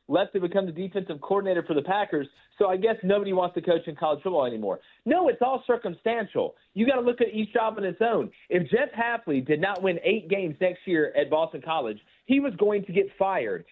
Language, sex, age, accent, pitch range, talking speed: English, male, 40-59, American, 175-230 Hz, 230 wpm